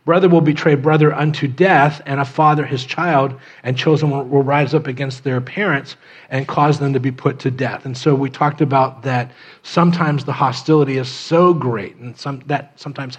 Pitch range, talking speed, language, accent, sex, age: 130-160 Hz, 195 wpm, English, American, male, 40-59